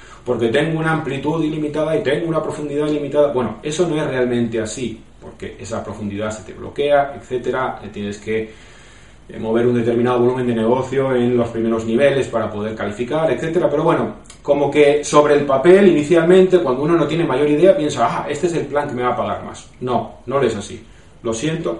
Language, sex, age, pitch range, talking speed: Spanish, male, 30-49, 125-165 Hz, 195 wpm